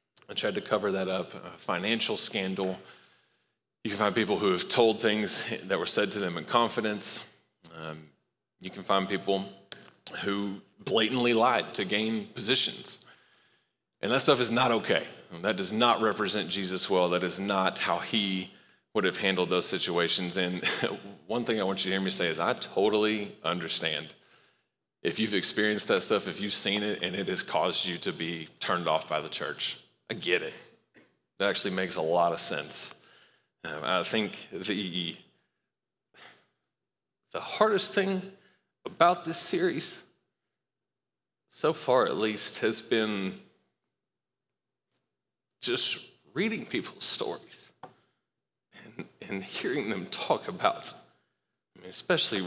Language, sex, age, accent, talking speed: English, male, 30-49, American, 150 wpm